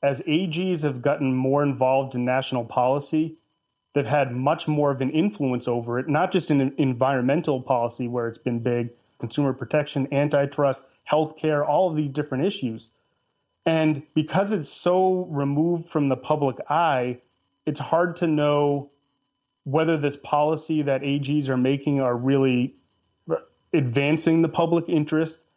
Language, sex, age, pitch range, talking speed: English, male, 30-49, 130-160 Hz, 150 wpm